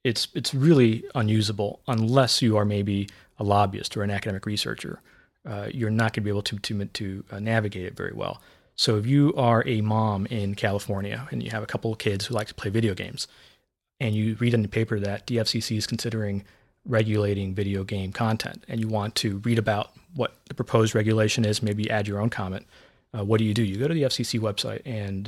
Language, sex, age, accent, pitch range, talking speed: English, male, 30-49, American, 105-125 Hz, 220 wpm